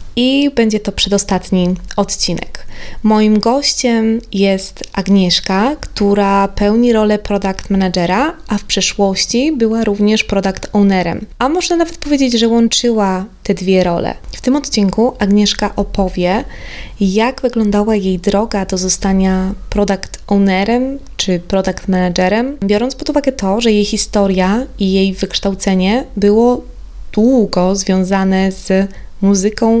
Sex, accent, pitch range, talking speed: female, native, 190-225 Hz, 125 wpm